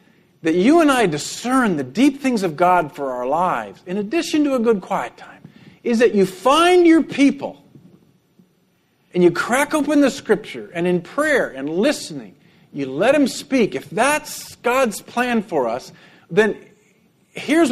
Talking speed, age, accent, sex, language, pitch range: 165 wpm, 50-69, American, male, English, 175-225 Hz